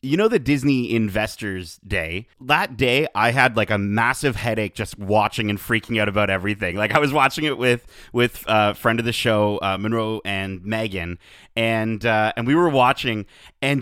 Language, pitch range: English, 105-135 Hz